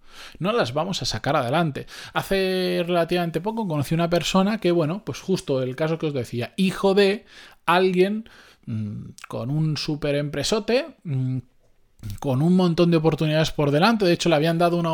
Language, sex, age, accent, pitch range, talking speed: Spanish, male, 20-39, Spanish, 135-190 Hz, 175 wpm